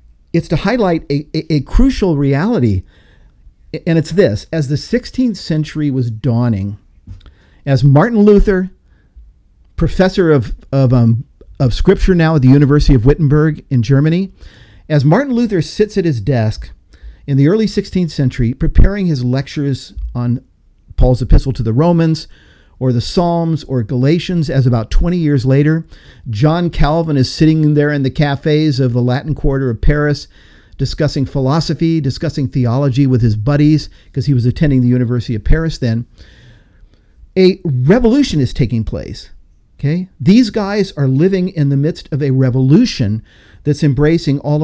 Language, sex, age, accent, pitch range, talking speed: English, male, 50-69, American, 125-160 Hz, 150 wpm